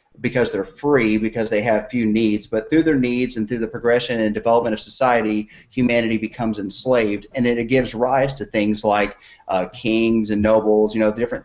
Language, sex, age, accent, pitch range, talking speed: English, male, 30-49, American, 105-120 Hz, 195 wpm